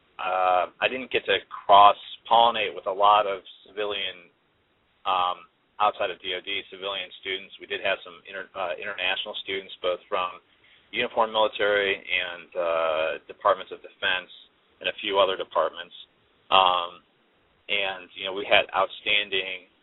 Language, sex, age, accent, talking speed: English, male, 30-49, American, 135 wpm